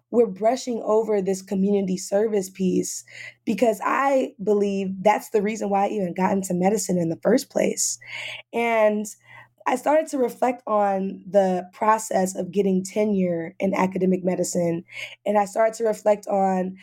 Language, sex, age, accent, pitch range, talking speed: English, female, 20-39, American, 185-225 Hz, 155 wpm